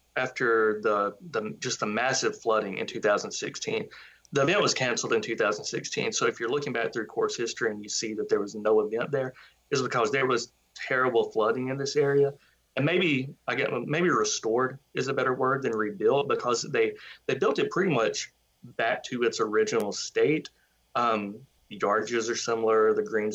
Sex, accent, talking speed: male, American, 185 wpm